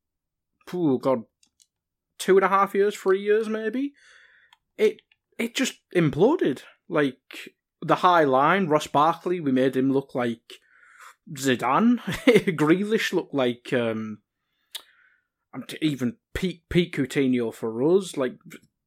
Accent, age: British, 20-39